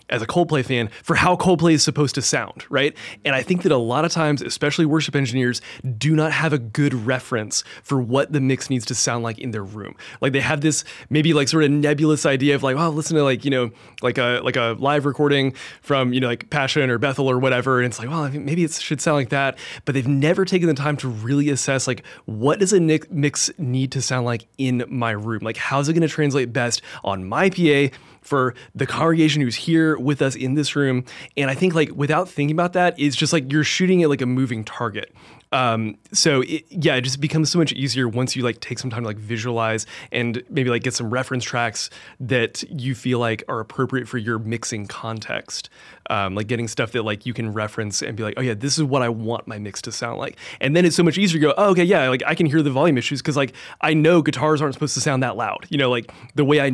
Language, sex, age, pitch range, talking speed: English, male, 20-39, 120-150 Hz, 255 wpm